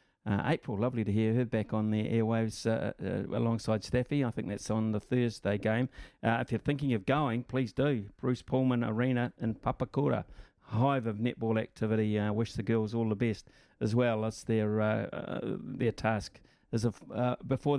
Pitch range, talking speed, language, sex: 110-125 Hz, 190 wpm, English, male